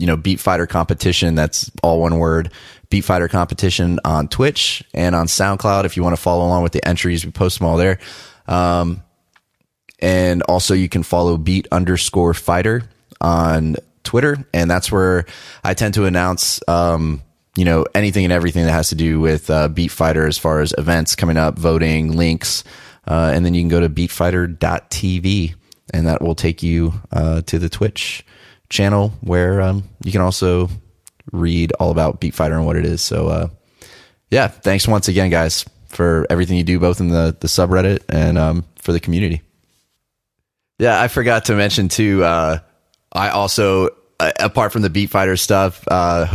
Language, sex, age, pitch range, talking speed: English, male, 20-39, 85-100 Hz, 185 wpm